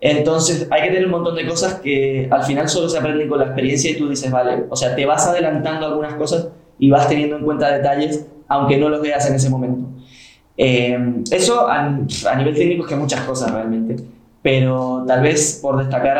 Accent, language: Argentinian, Spanish